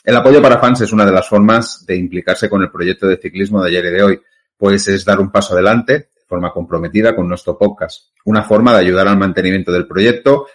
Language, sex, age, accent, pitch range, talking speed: Spanish, male, 30-49, Spanish, 100-130 Hz, 235 wpm